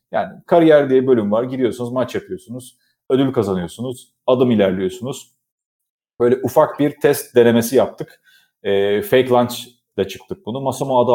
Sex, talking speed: male, 135 wpm